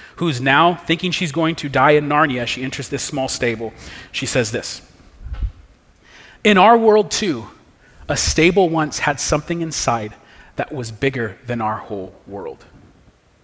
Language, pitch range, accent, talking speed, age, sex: English, 110-145 Hz, American, 150 wpm, 40-59, male